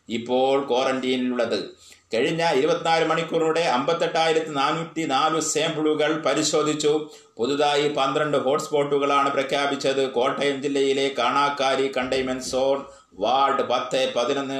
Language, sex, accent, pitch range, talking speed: Malayalam, male, native, 135-160 Hz, 90 wpm